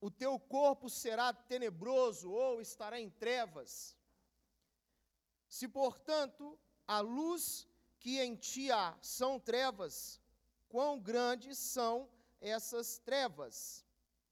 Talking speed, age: 100 wpm, 40-59